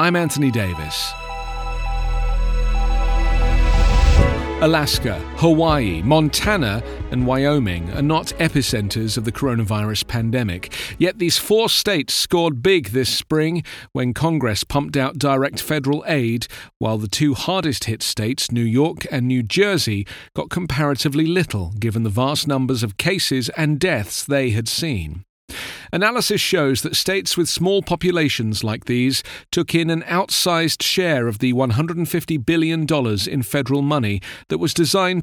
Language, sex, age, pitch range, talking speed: English, male, 40-59, 110-165 Hz, 135 wpm